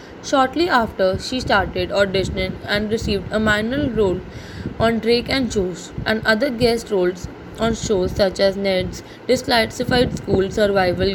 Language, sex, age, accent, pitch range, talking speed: English, female, 20-39, Indian, 190-245 Hz, 140 wpm